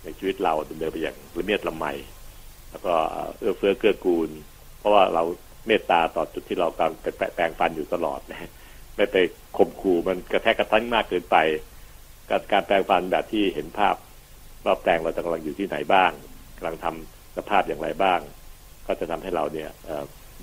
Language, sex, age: Thai, male, 60-79